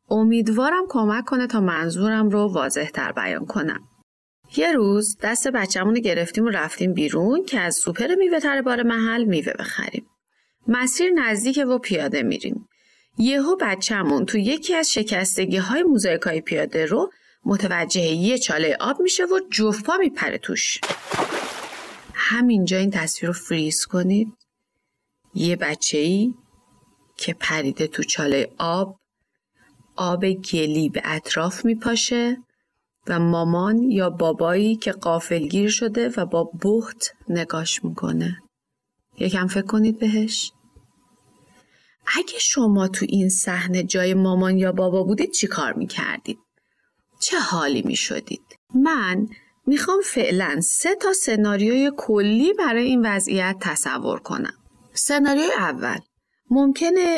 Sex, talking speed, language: female, 120 wpm, Persian